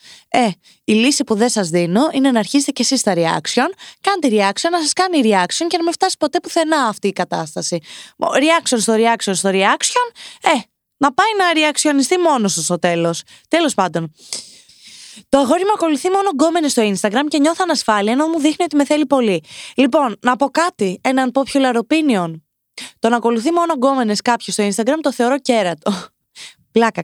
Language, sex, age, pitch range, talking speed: Greek, female, 20-39, 200-305 Hz, 180 wpm